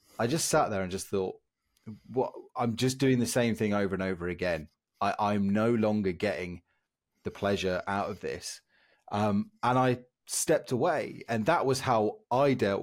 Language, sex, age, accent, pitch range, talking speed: English, male, 30-49, British, 100-125 Hz, 185 wpm